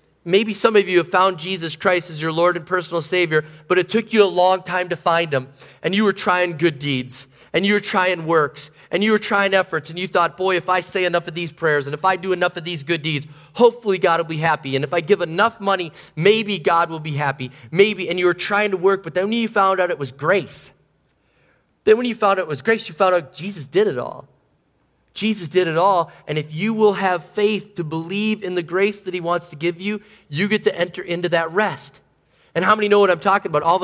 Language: English